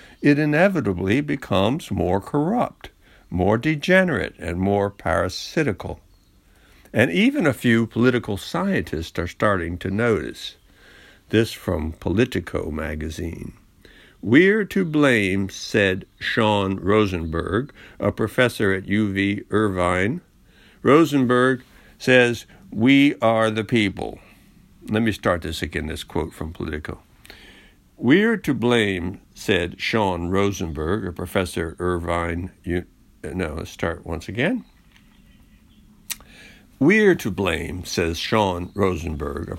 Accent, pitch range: American, 90-120 Hz